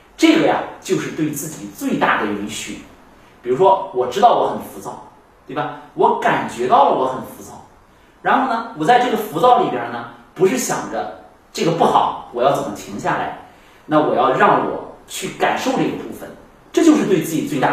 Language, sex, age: Chinese, male, 30-49